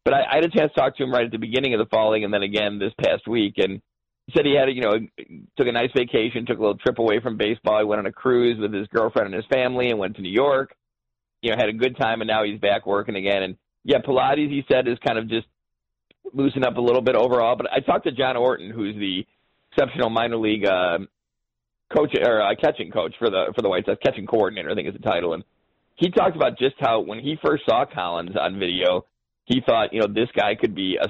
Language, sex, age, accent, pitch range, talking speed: English, male, 40-59, American, 95-120 Hz, 265 wpm